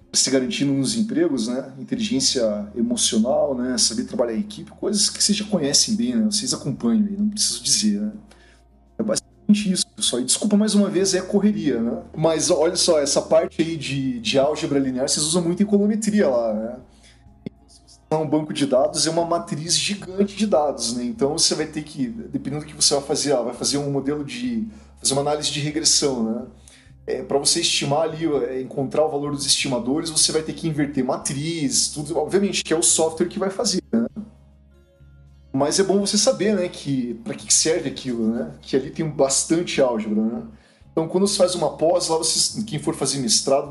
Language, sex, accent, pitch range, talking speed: Portuguese, male, Brazilian, 140-200 Hz, 200 wpm